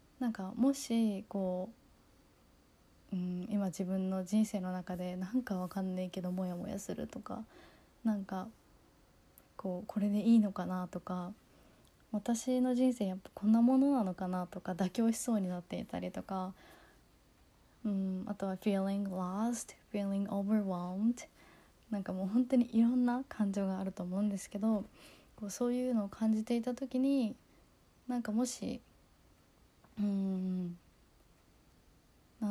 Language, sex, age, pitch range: Japanese, female, 20-39, 185-225 Hz